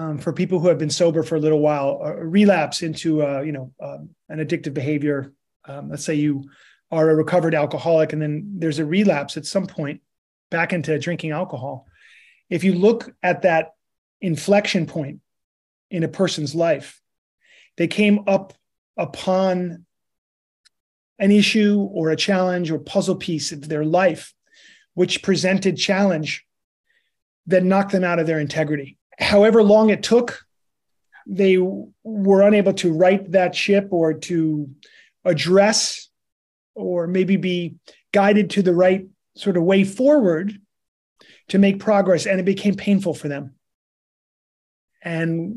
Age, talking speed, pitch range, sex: 30-49, 145 wpm, 160-195 Hz, male